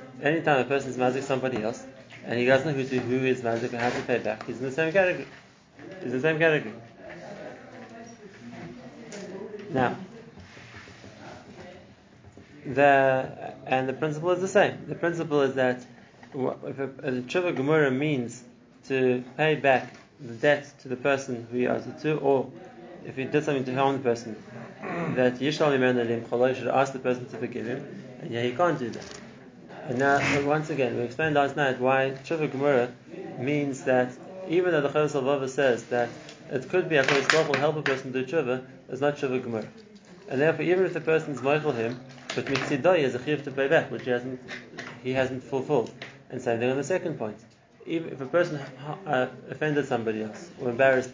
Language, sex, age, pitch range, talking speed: English, male, 30-49, 125-155 Hz, 185 wpm